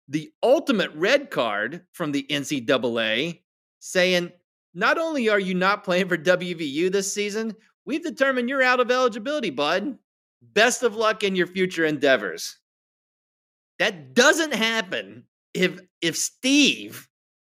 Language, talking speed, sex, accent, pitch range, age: English, 130 wpm, male, American, 145-210 Hz, 30-49